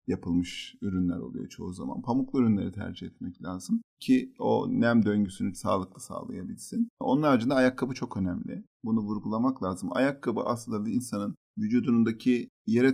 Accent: native